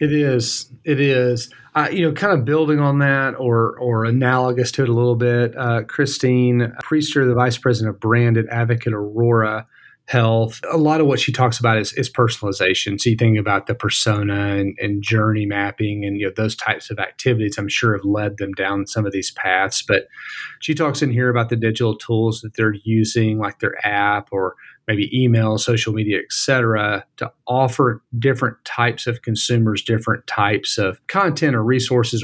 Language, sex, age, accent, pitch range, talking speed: English, male, 30-49, American, 110-125 Hz, 190 wpm